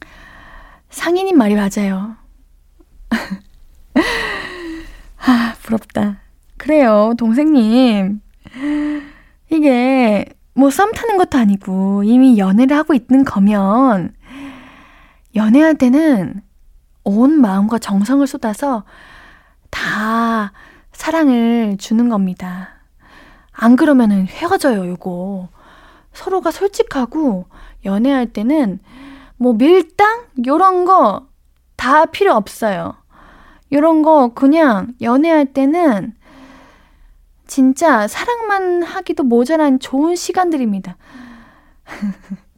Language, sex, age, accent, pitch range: Korean, female, 20-39, native, 210-300 Hz